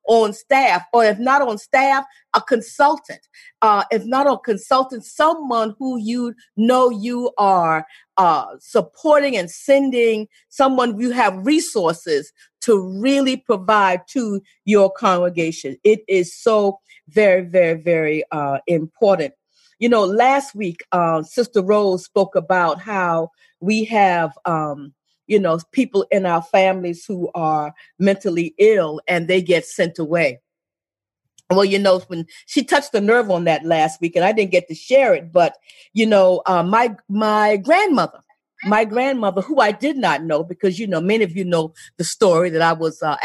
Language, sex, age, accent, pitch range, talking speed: English, female, 40-59, American, 175-235 Hz, 160 wpm